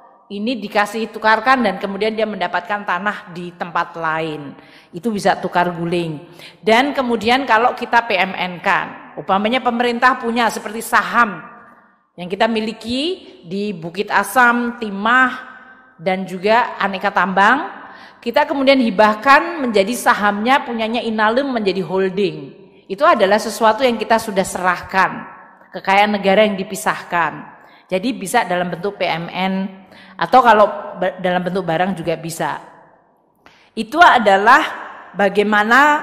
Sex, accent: female, native